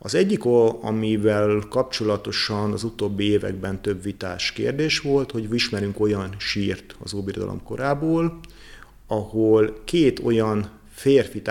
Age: 30-49